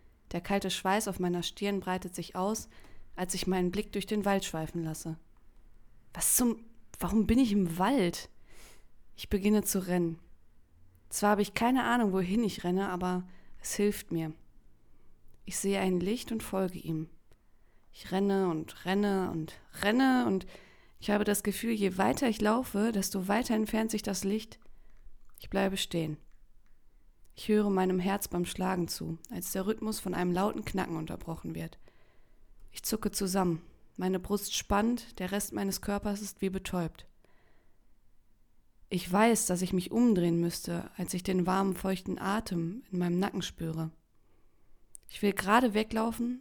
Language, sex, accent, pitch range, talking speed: German, female, German, 175-205 Hz, 160 wpm